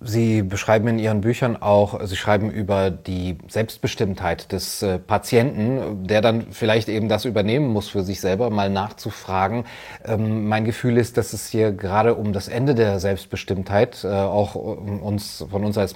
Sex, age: male, 30-49